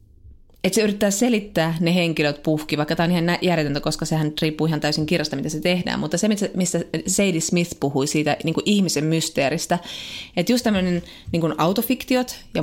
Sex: female